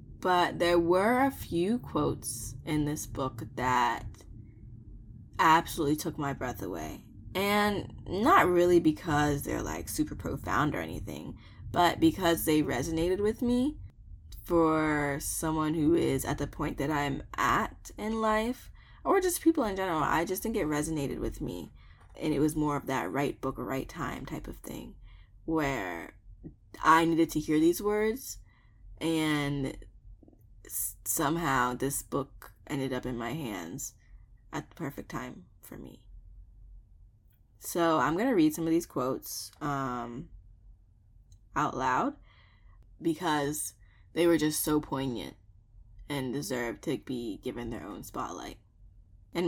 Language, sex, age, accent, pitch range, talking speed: English, female, 10-29, American, 105-165 Hz, 140 wpm